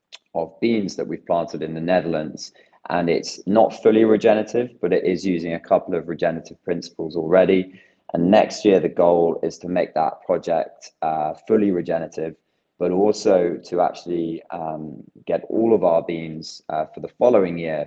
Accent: British